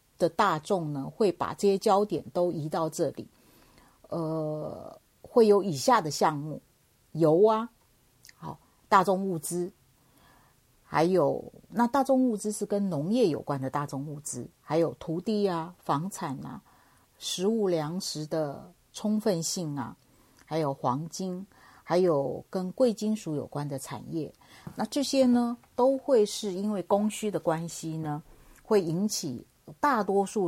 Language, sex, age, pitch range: Chinese, female, 50-69, 150-205 Hz